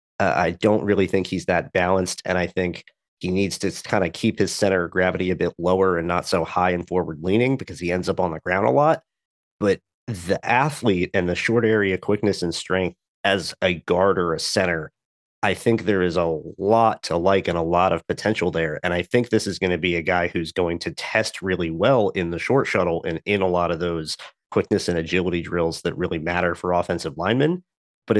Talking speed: 225 wpm